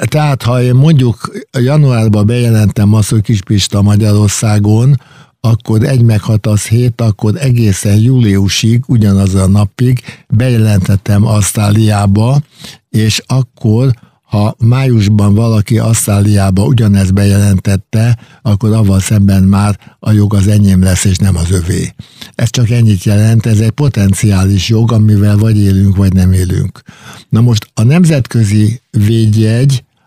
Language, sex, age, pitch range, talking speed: Hungarian, male, 60-79, 100-120 Hz, 125 wpm